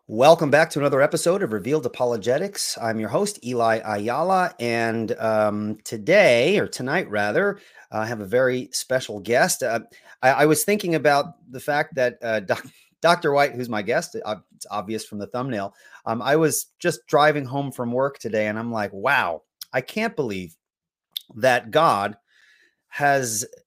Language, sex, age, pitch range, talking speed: English, male, 30-49, 115-155 Hz, 160 wpm